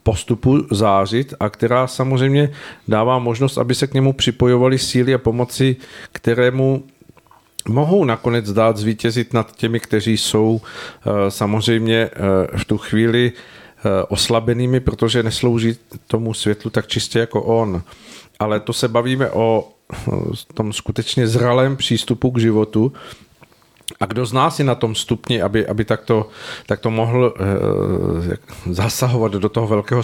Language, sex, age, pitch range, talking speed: Czech, male, 40-59, 110-125 Hz, 130 wpm